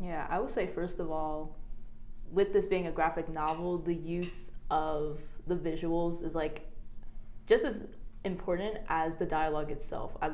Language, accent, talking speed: English, American, 165 wpm